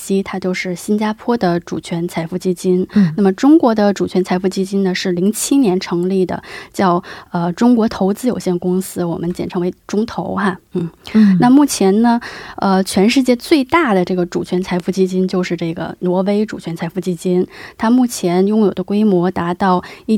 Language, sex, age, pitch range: Korean, female, 20-39, 180-220 Hz